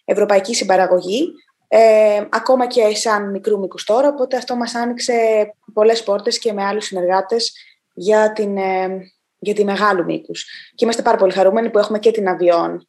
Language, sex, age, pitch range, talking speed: Greek, female, 20-39, 195-245 Hz, 160 wpm